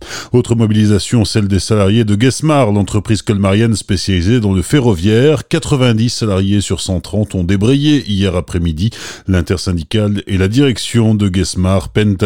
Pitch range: 95-125 Hz